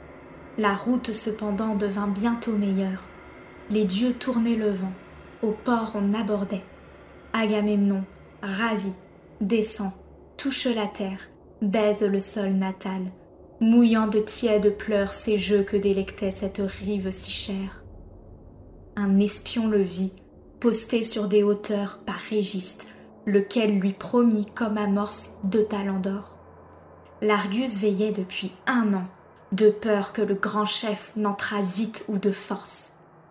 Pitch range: 195-215 Hz